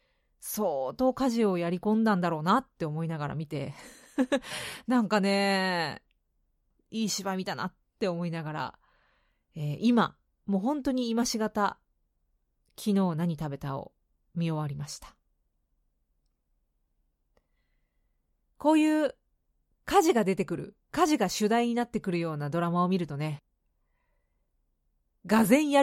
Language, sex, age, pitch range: Japanese, female, 30-49, 160-250 Hz